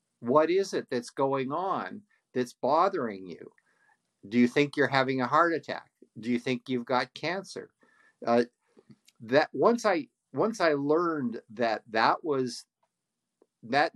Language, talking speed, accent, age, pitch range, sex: English, 145 wpm, American, 50-69, 120-155 Hz, male